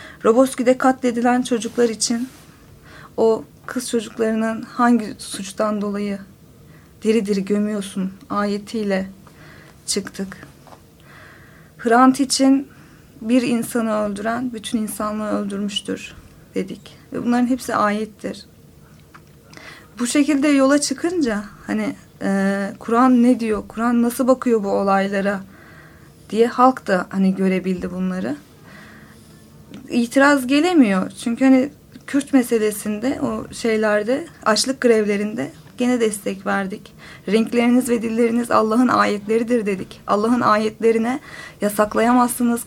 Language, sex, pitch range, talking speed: Turkish, female, 210-250 Hz, 100 wpm